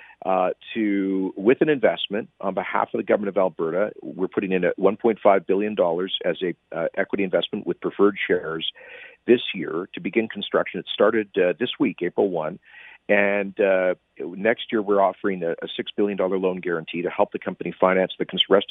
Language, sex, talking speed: English, male, 190 wpm